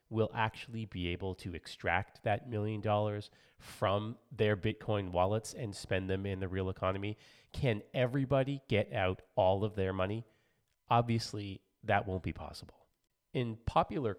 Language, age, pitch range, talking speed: English, 30-49, 95-115 Hz, 150 wpm